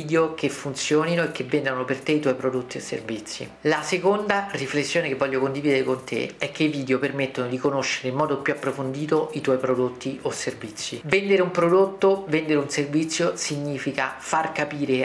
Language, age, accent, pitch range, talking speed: Italian, 40-59, native, 135-160 Hz, 180 wpm